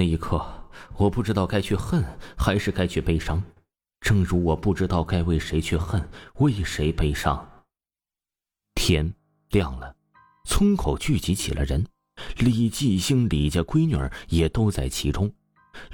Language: Chinese